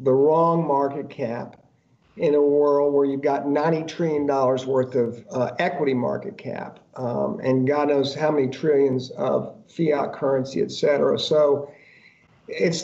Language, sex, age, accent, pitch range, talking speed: English, male, 50-69, American, 135-165 Hz, 150 wpm